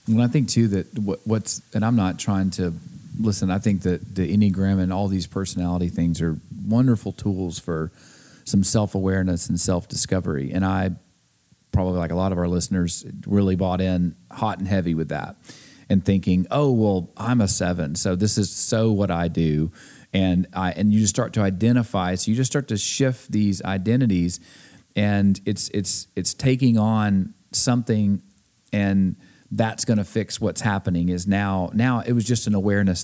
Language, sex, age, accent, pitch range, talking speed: English, male, 40-59, American, 95-115 Hz, 185 wpm